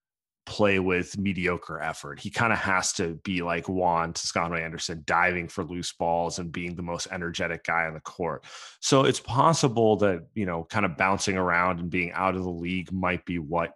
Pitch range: 85-110 Hz